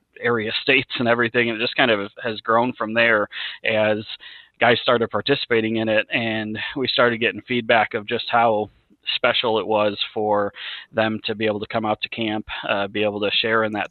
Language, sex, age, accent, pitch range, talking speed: English, male, 30-49, American, 105-115 Hz, 205 wpm